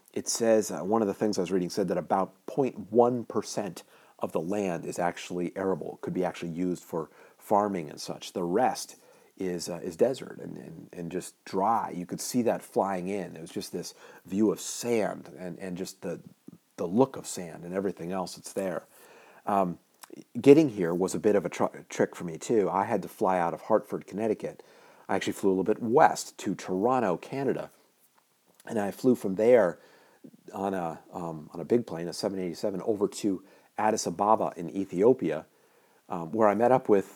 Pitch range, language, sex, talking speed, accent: 85-105 Hz, English, male, 200 wpm, American